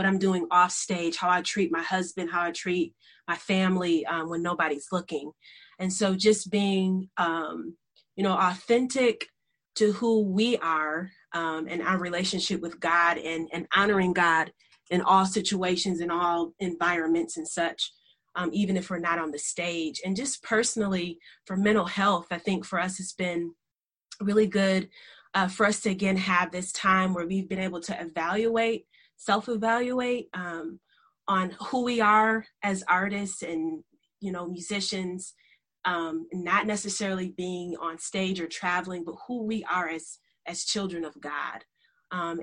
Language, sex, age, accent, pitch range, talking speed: English, female, 30-49, American, 170-200 Hz, 165 wpm